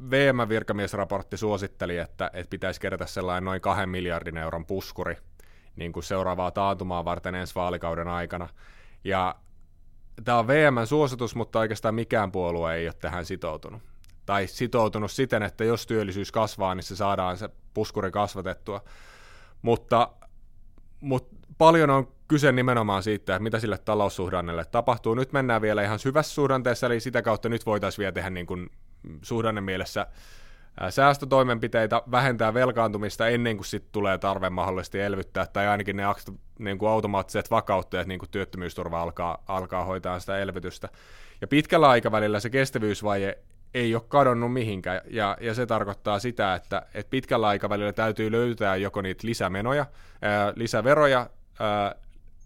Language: Finnish